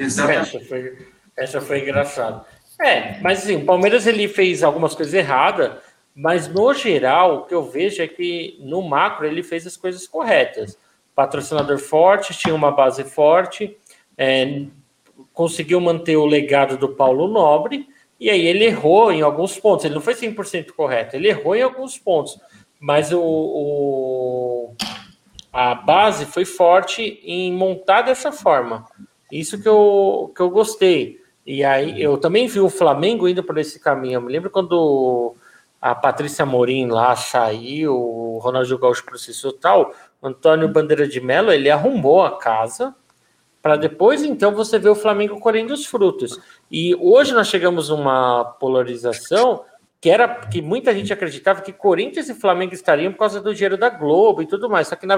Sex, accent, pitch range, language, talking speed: male, Brazilian, 140-210 Hz, Portuguese, 160 wpm